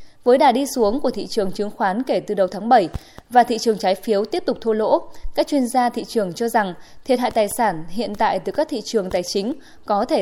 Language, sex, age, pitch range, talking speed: Vietnamese, female, 20-39, 205-265 Hz, 260 wpm